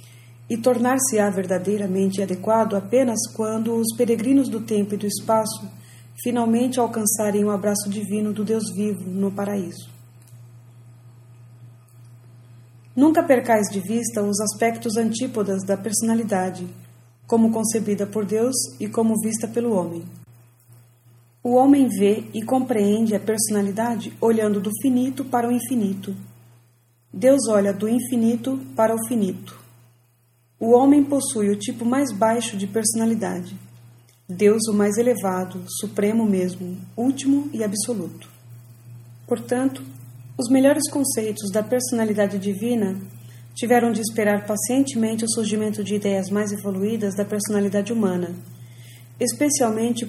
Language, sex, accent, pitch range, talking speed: English, female, Brazilian, 185-230 Hz, 120 wpm